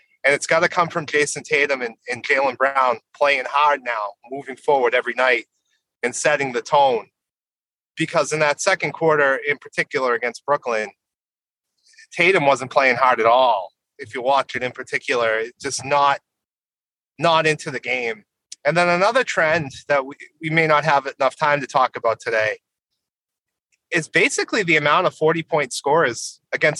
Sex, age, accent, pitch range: male, 30-49, American, 135-180 Hz